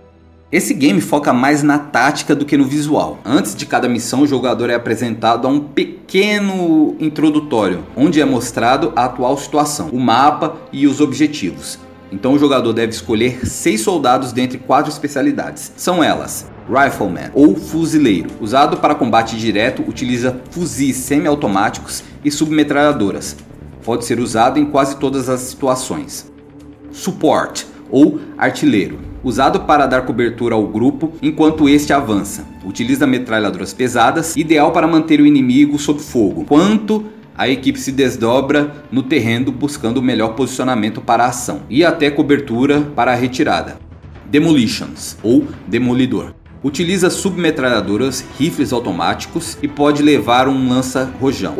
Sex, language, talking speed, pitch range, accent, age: male, Portuguese, 140 wpm, 125-155 Hz, Brazilian, 30-49